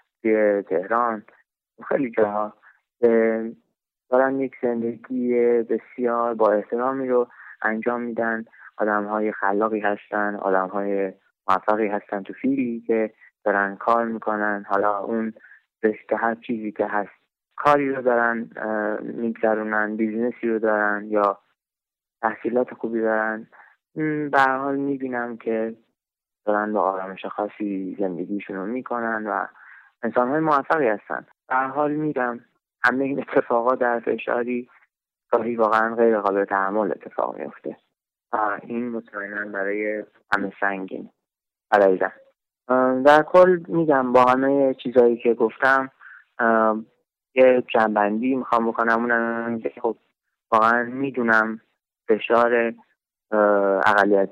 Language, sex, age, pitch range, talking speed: English, male, 20-39, 105-120 Hz, 110 wpm